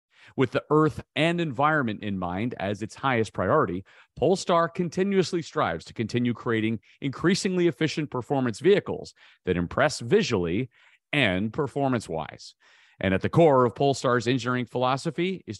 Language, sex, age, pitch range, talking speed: English, male, 40-59, 110-150 Hz, 135 wpm